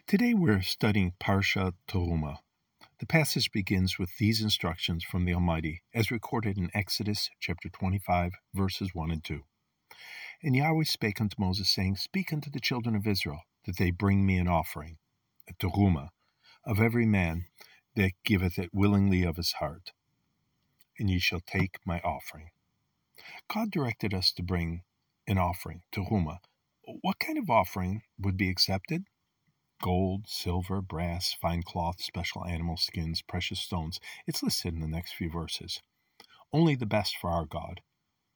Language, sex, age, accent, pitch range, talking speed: English, male, 50-69, American, 90-115 Hz, 150 wpm